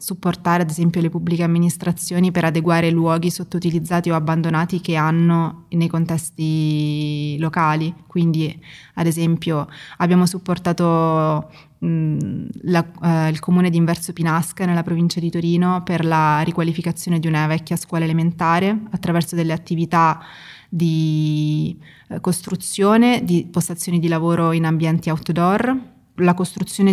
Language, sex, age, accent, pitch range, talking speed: Italian, female, 20-39, native, 160-180 Hz, 125 wpm